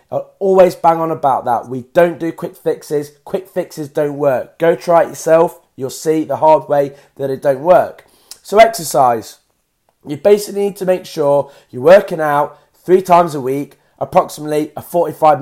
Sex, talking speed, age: male, 175 wpm, 20-39